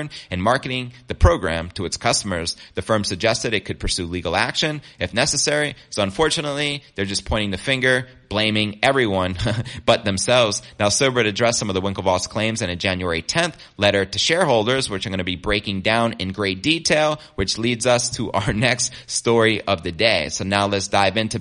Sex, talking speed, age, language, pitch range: male, 190 wpm, 30-49, English, 95-120 Hz